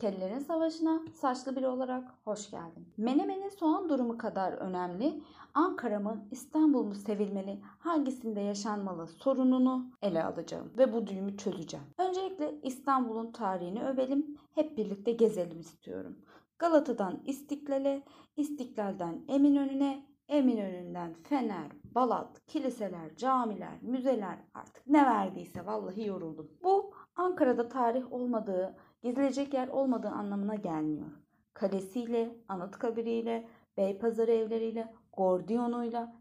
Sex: female